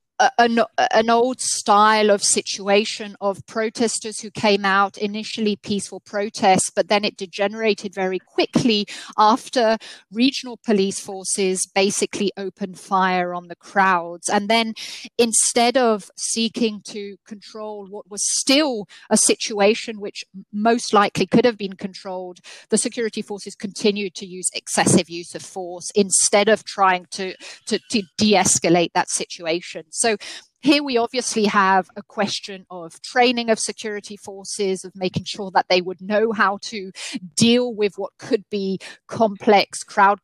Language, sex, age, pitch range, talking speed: Amharic, female, 30-49, 190-225 Hz, 145 wpm